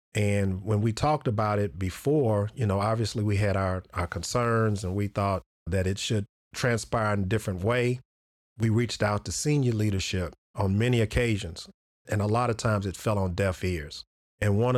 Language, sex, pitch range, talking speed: English, male, 95-115 Hz, 190 wpm